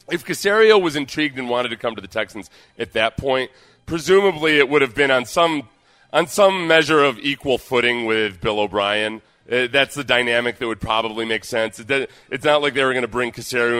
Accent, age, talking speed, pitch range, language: American, 30-49, 205 wpm, 110-145 Hz, English